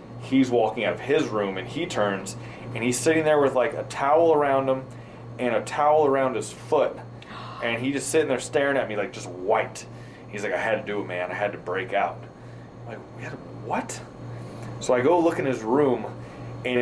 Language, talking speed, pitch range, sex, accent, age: English, 225 wpm, 105-125 Hz, male, American, 30-49